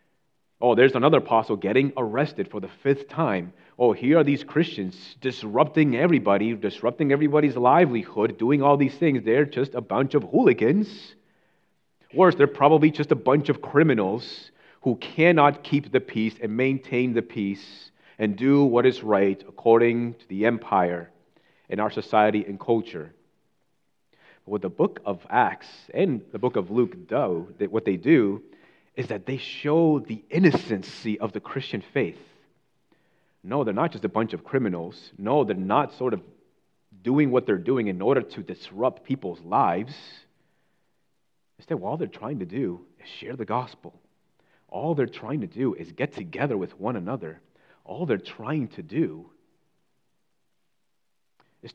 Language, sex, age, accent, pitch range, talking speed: English, male, 30-49, American, 110-145 Hz, 160 wpm